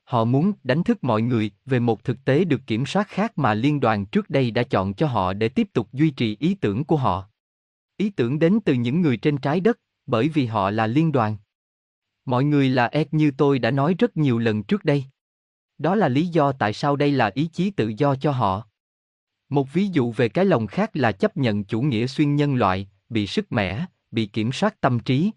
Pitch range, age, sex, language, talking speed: 110-155 Hz, 20-39, male, Vietnamese, 230 wpm